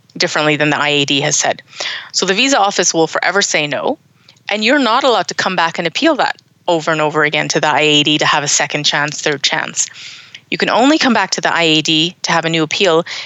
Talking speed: 230 wpm